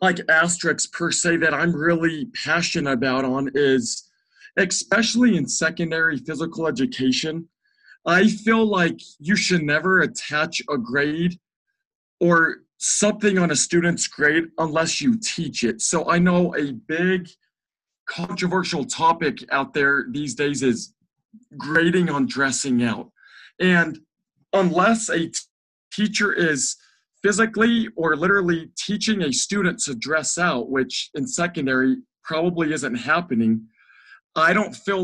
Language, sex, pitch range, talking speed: English, male, 140-185 Hz, 130 wpm